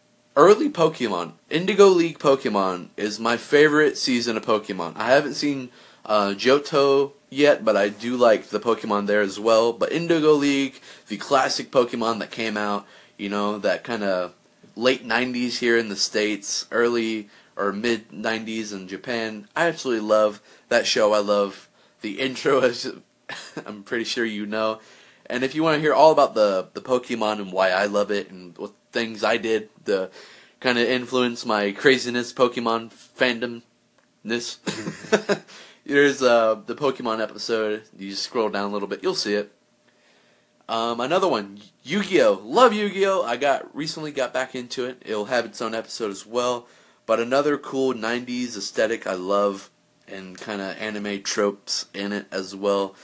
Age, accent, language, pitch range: 30-49, American, English, 105-130 Hz